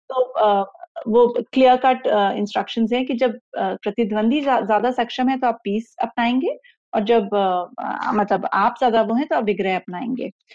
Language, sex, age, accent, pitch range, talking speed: Hindi, female, 30-49, native, 215-285 Hz, 155 wpm